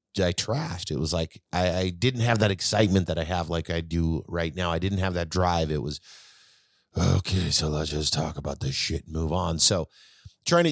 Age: 30-49